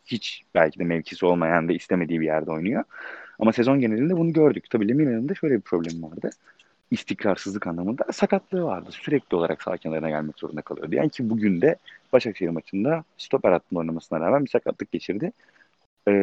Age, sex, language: 30-49, male, Turkish